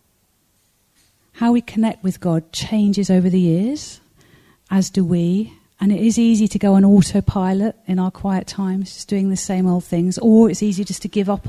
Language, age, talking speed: English, 40-59, 195 wpm